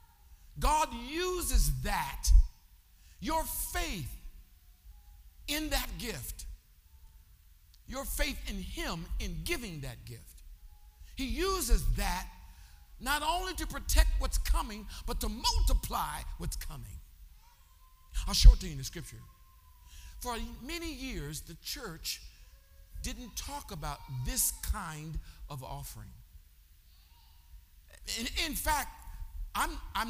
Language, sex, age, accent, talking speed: English, male, 50-69, American, 110 wpm